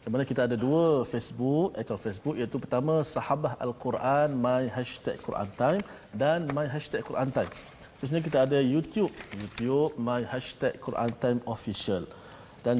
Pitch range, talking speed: 115-140 Hz, 145 wpm